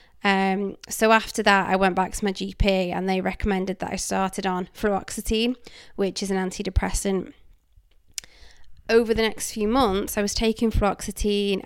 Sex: female